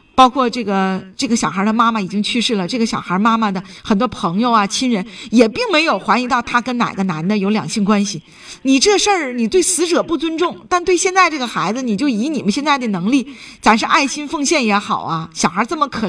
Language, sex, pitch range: Chinese, female, 210-275 Hz